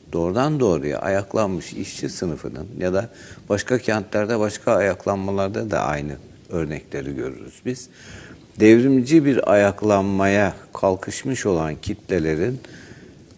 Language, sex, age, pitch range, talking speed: Turkish, male, 60-79, 95-125 Hz, 100 wpm